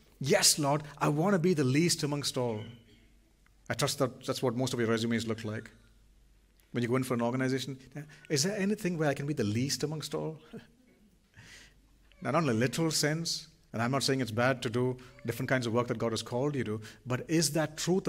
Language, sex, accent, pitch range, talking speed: English, male, Indian, 125-165 Hz, 220 wpm